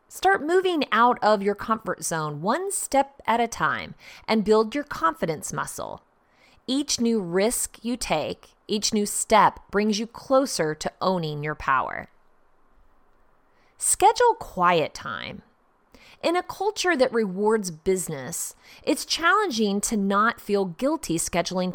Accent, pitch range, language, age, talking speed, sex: American, 185-275 Hz, English, 30-49, 130 wpm, female